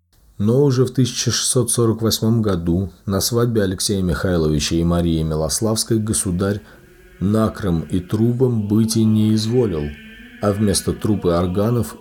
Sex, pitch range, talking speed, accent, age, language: male, 85-115 Hz, 120 wpm, native, 40-59, Russian